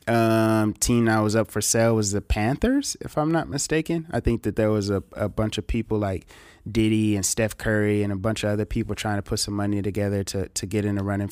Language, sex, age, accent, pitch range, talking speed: English, male, 20-39, American, 100-115 Hz, 250 wpm